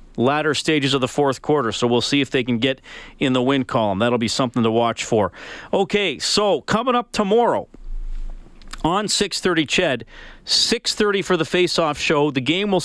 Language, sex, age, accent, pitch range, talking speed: English, male, 40-59, American, 130-170 Hz, 180 wpm